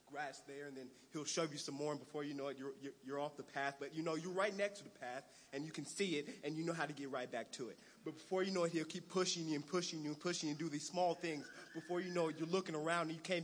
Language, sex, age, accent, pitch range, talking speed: English, male, 30-49, American, 140-170 Hz, 325 wpm